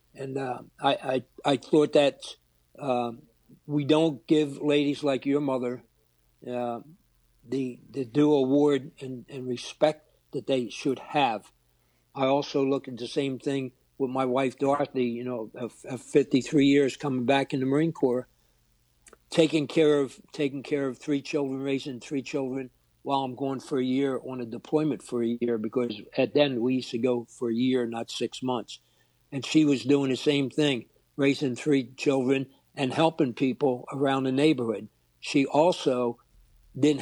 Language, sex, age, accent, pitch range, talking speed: English, male, 60-79, American, 125-145 Hz, 170 wpm